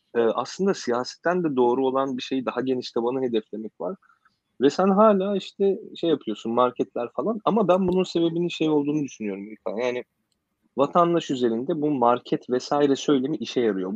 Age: 30-49